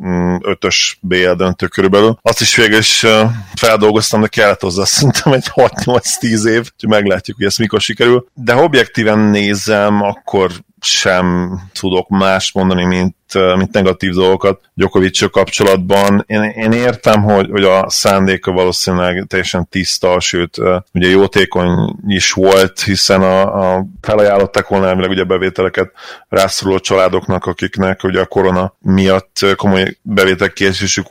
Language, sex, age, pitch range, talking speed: Hungarian, male, 30-49, 90-105 Hz, 130 wpm